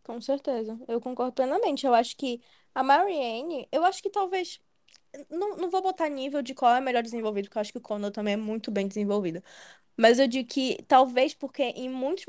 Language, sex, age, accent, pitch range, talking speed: Portuguese, female, 10-29, Brazilian, 225-285 Hz, 215 wpm